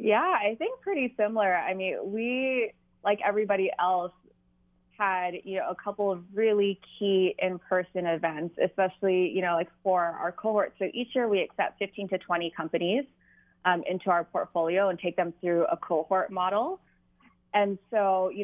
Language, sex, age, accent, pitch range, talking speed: English, female, 20-39, American, 175-205 Hz, 165 wpm